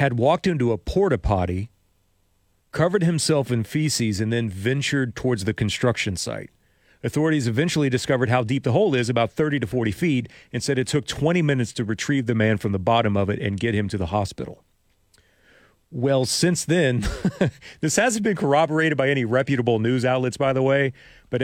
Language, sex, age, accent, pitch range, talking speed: English, male, 40-59, American, 100-130 Hz, 190 wpm